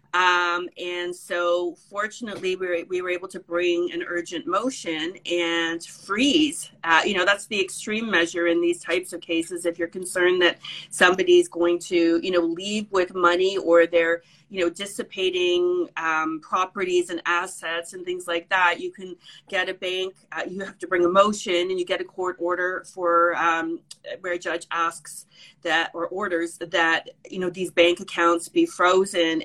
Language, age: English, 30-49